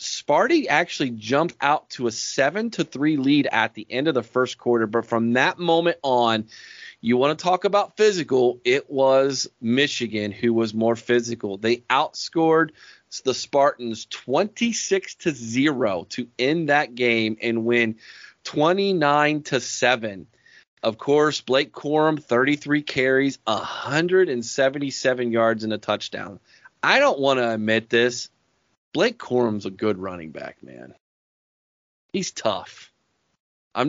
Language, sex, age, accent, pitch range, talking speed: English, male, 30-49, American, 115-150 Hz, 130 wpm